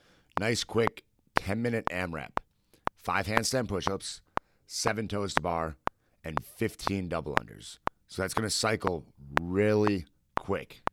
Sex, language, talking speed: male, English, 105 wpm